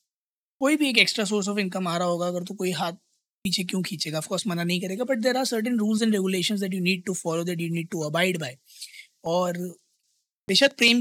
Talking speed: 225 wpm